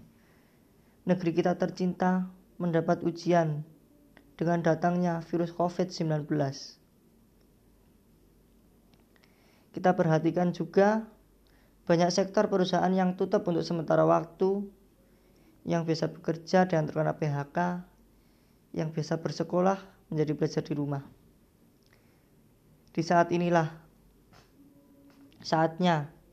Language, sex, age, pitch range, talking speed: Indonesian, female, 20-39, 160-180 Hz, 85 wpm